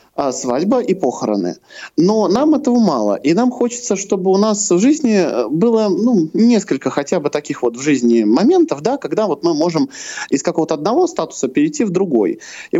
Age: 20-39